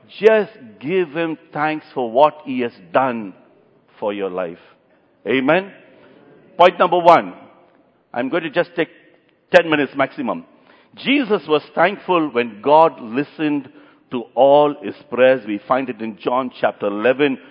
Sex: male